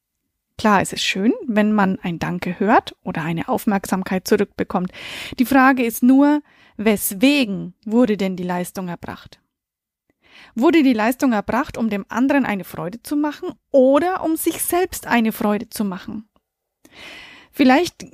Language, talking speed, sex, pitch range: German, 140 wpm, female, 215-265 Hz